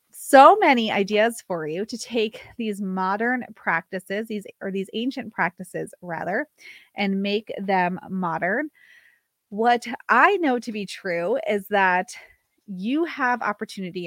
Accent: American